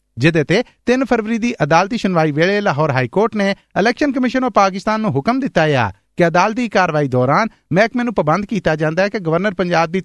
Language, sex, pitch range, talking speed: Punjabi, male, 155-220 Hz, 195 wpm